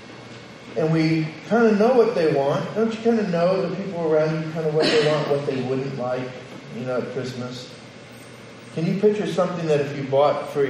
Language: English